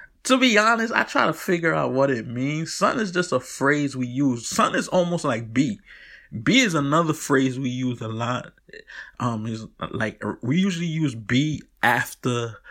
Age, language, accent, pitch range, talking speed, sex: 20-39, English, American, 110-140 Hz, 185 wpm, male